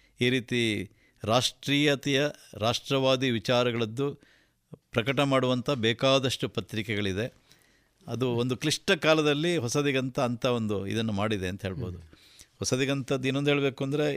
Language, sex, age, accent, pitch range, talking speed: Kannada, male, 50-69, native, 110-135 Hz, 95 wpm